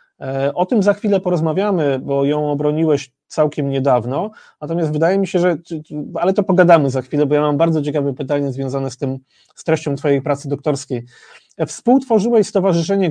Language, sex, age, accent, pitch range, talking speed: Polish, male, 30-49, native, 140-175 Hz, 165 wpm